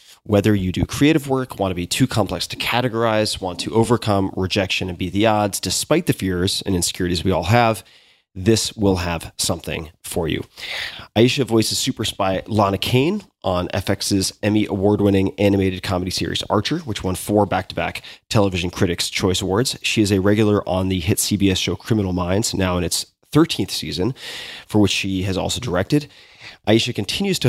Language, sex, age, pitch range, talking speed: English, male, 30-49, 95-115 Hz, 175 wpm